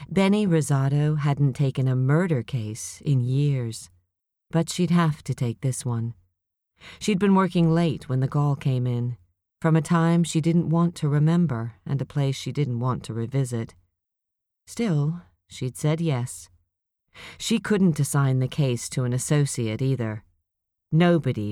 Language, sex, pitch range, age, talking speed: English, female, 115-150 Hz, 50-69, 155 wpm